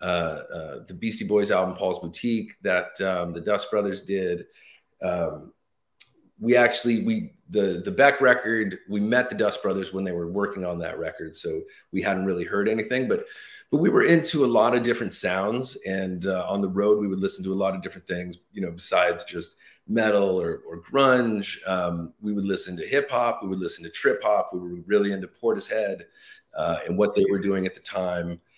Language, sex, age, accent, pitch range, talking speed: English, male, 30-49, American, 95-120 Hz, 210 wpm